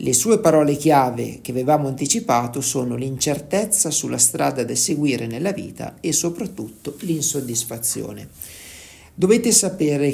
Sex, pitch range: male, 125-165 Hz